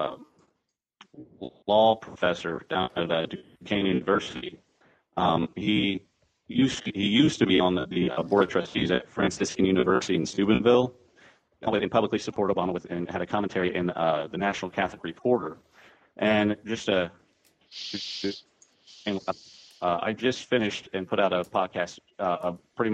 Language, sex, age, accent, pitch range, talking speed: English, male, 30-49, American, 90-115 Hz, 150 wpm